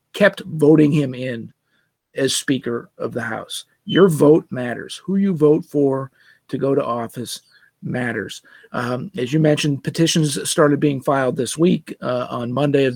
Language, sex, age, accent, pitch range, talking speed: English, male, 40-59, American, 135-155 Hz, 160 wpm